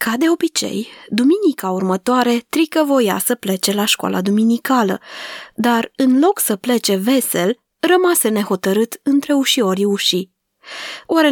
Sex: female